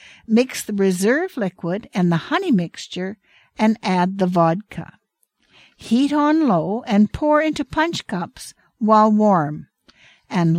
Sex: female